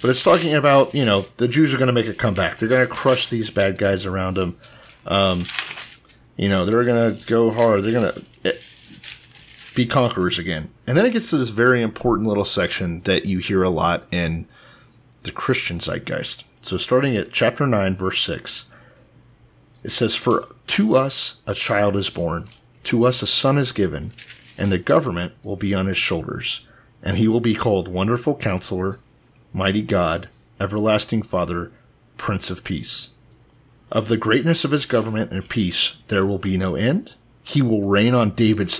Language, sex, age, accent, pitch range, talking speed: English, male, 30-49, American, 95-125 Hz, 180 wpm